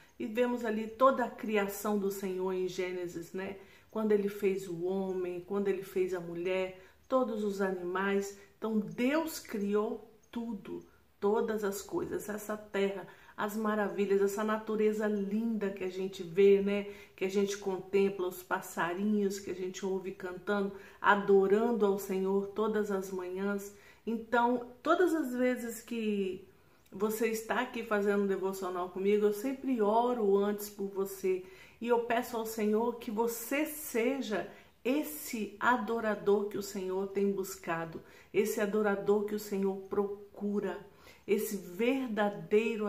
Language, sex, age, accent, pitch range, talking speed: Portuguese, female, 50-69, Brazilian, 195-230 Hz, 140 wpm